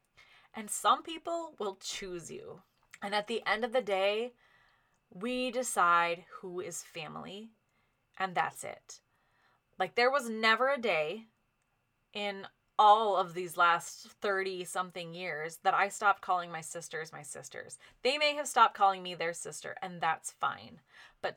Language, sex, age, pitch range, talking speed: English, female, 20-39, 170-215 Hz, 155 wpm